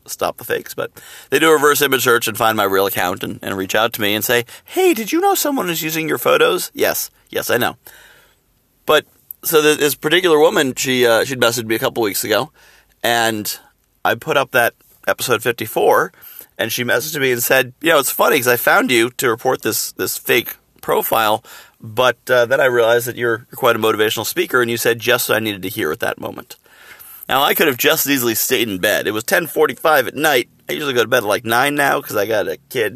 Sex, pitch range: male, 110-160 Hz